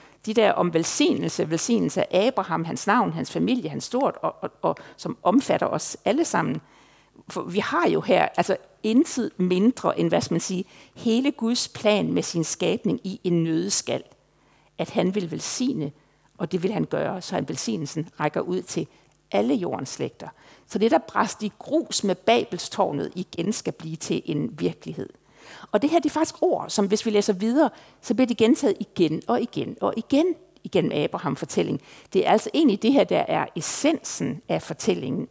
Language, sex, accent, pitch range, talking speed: Danish, female, native, 170-240 Hz, 185 wpm